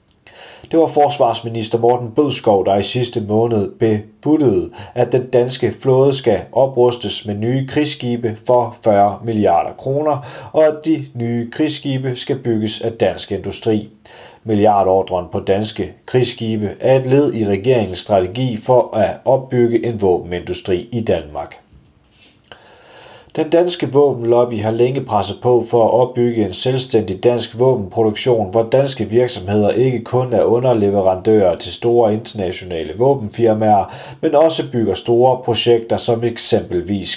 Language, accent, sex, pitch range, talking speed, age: Danish, native, male, 105-130 Hz, 130 wpm, 30-49